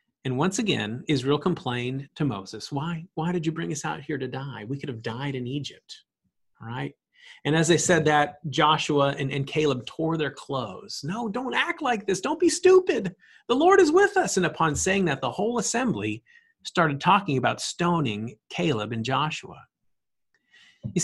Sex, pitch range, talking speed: male, 145-195 Hz, 185 wpm